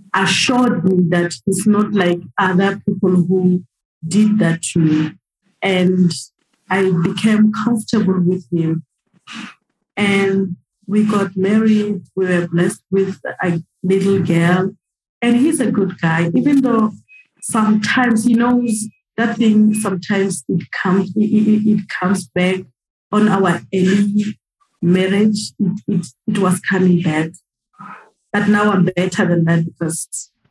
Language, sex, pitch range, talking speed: English, female, 180-215 Hz, 130 wpm